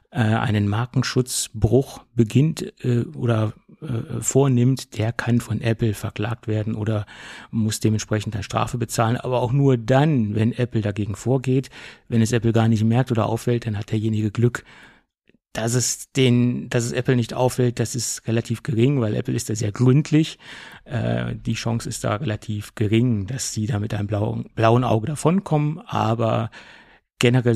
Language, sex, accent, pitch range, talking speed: German, male, German, 110-125 Hz, 165 wpm